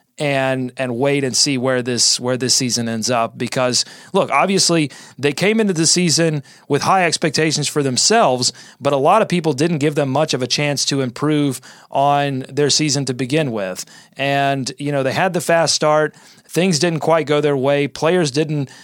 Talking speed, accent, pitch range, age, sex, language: 195 wpm, American, 135-165 Hz, 30-49, male, English